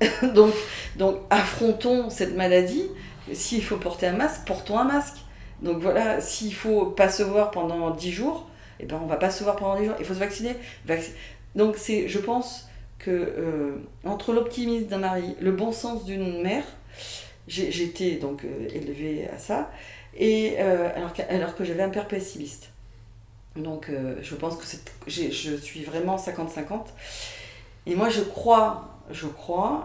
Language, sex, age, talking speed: French, female, 40-59, 175 wpm